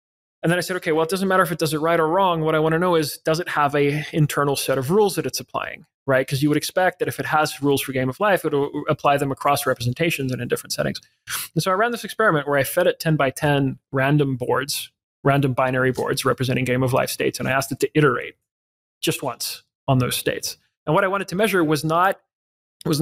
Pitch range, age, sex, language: 135-160 Hz, 30-49, male, English